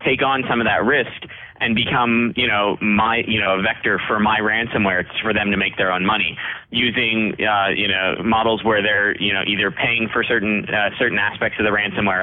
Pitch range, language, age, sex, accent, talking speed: 105-125 Hz, English, 30-49, male, American, 220 wpm